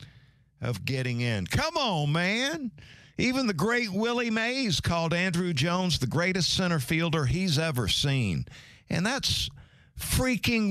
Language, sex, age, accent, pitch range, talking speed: English, male, 50-69, American, 120-170 Hz, 135 wpm